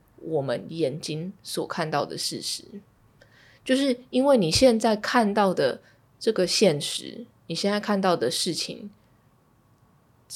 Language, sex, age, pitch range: Chinese, female, 20-39, 140-185 Hz